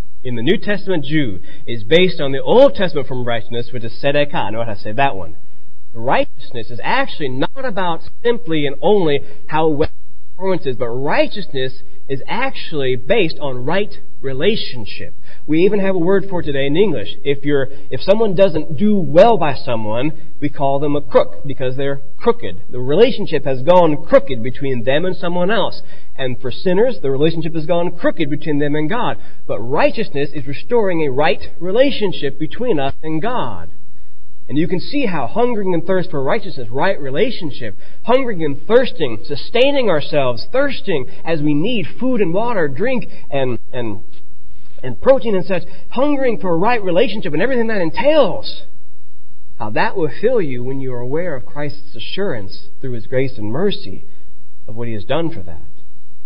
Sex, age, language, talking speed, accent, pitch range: male, 30-49, English, 180 wpm, American, 120-185 Hz